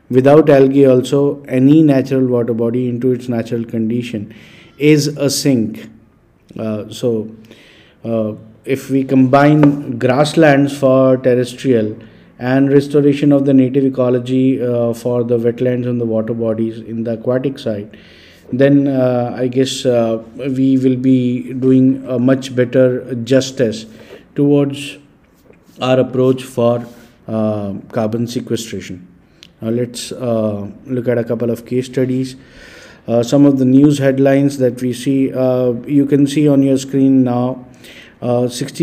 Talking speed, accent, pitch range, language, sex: 140 wpm, native, 120-135 Hz, Hindi, male